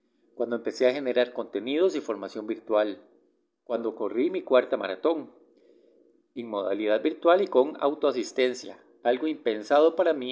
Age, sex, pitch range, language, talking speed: 40-59, male, 120-155 Hz, Spanish, 135 wpm